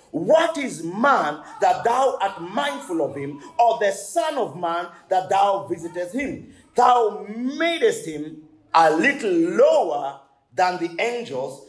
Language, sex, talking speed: English, male, 140 wpm